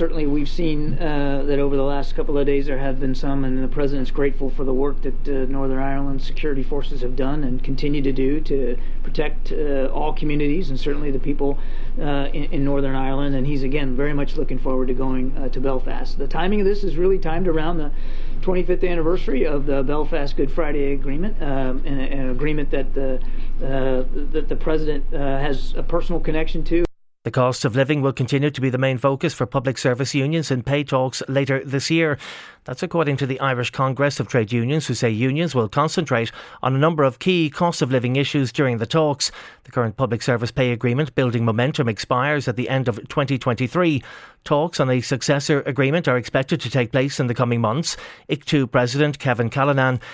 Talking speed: 210 wpm